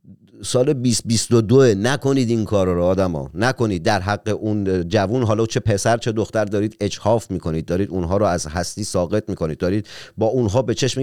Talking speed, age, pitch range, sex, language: 190 wpm, 40-59, 105-160 Hz, male, Persian